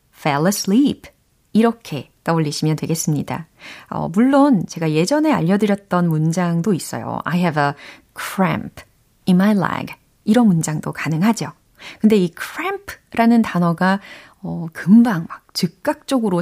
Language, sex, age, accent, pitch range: Korean, female, 30-49, native, 160-240 Hz